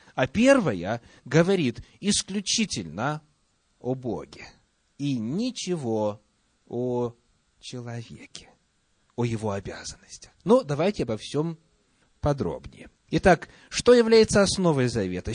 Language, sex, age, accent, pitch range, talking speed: Russian, male, 30-49, native, 115-170 Hz, 90 wpm